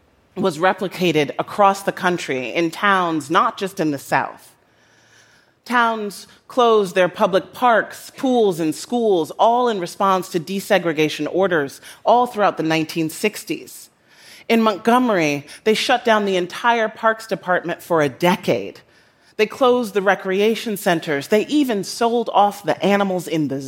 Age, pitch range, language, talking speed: 30-49, 150-215 Hz, English, 140 wpm